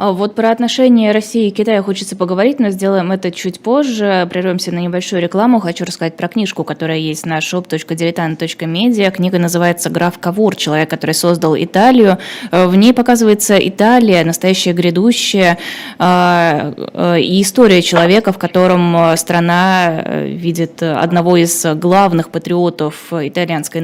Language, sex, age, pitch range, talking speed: Russian, female, 20-39, 165-195 Hz, 130 wpm